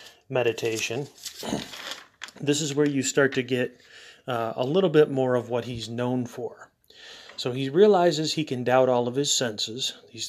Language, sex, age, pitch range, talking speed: English, male, 30-49, 120-140 Hz, 170 wpm